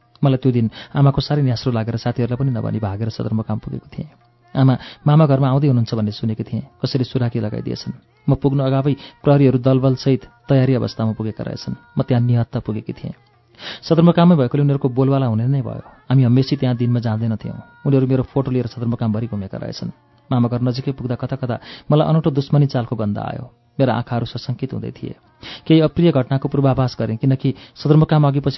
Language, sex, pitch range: English, male, 120-140 Hz